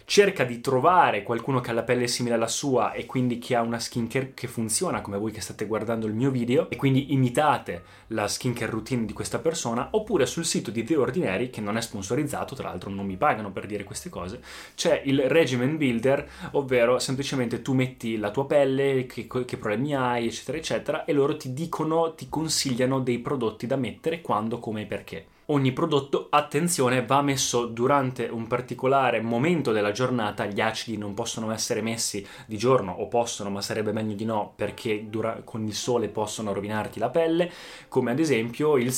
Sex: male